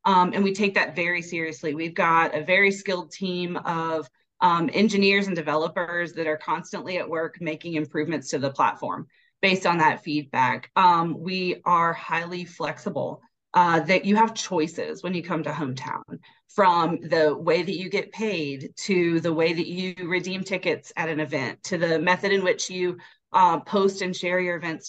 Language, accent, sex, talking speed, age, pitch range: English, American, female, 185 wpm, 30-49, 165-195 Hz